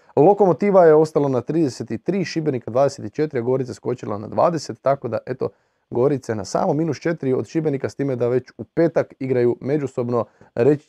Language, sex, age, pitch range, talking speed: Croatian, male, 20-39, 115-160 Hz, 160 wpm